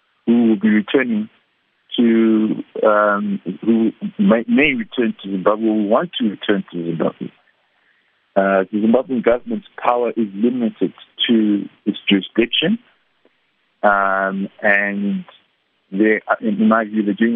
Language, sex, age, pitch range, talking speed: English, male, 50-69, 95-110 Hz, 125 wpm